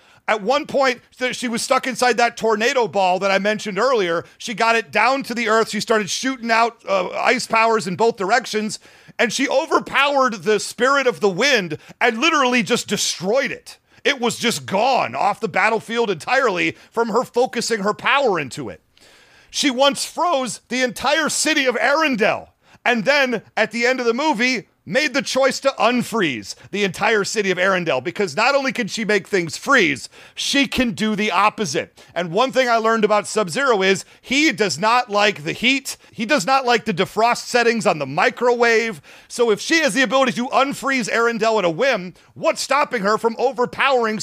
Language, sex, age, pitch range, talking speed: English, male, 40-59, 210-255 Hz, 190 wpm